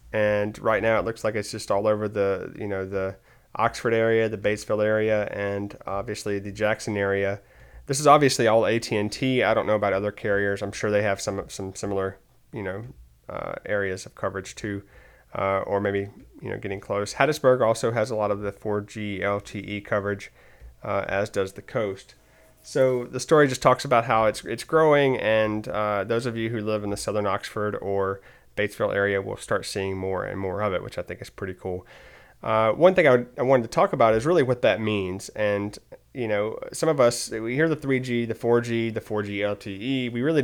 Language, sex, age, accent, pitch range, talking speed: English, male, 30-49, American, 100-120 Hz, 210 wpm